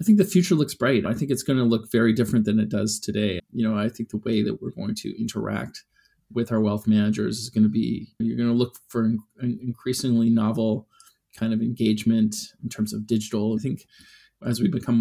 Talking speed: 230 wpm